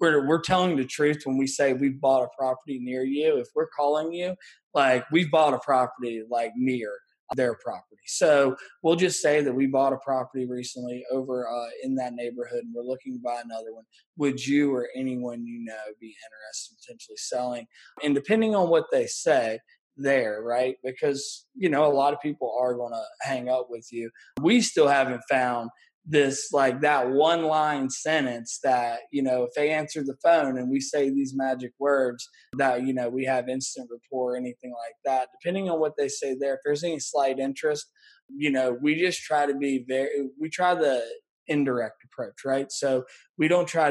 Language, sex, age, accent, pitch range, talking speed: English, male, 20-39, American, 125-155 Hz, 200 wpm